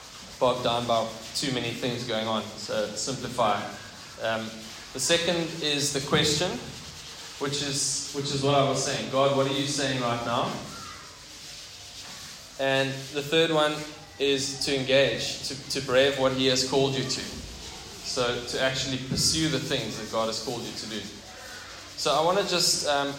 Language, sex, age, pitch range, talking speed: English, male, 10-29, 125-145 Hz, 170 wpm